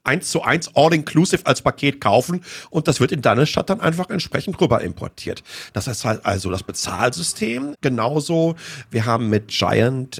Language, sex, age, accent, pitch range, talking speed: German, male, 40-59, German, 115-155 Hz, 170 wpm